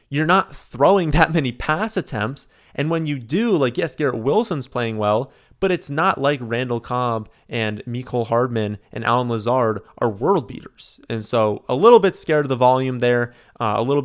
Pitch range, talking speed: 115-155 Hz, 190 wpm